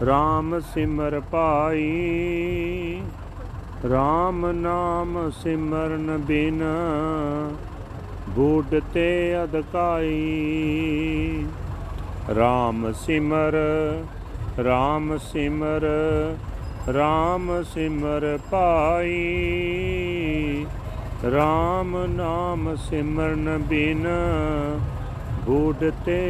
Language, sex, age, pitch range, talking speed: Punjabi, male, 50-69, 140-160 Hz, 50 wpm